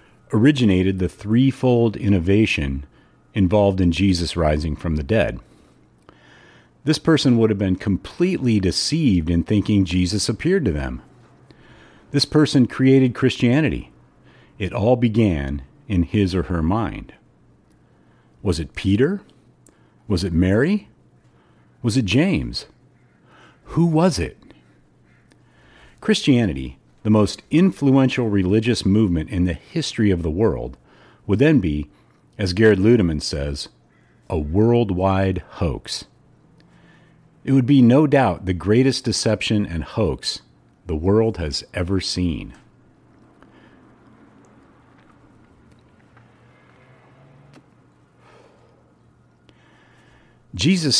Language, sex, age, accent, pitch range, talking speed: English, male, 40-59, American, 85-125 Hz, 100 wpm